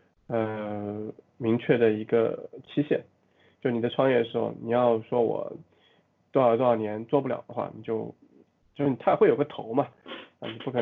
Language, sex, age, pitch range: Chinese, male, 20-39, 115-130 Hz